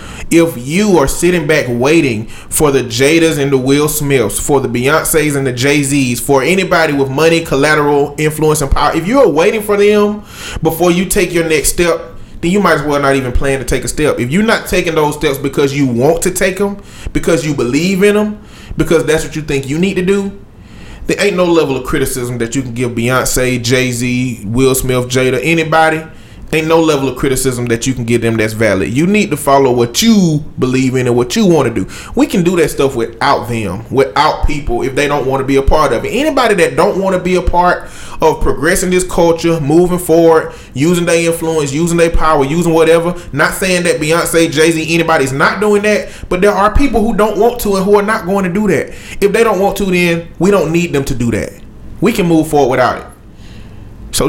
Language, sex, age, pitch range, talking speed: English, male, 20-39, 135-180 Hz, 225 wpm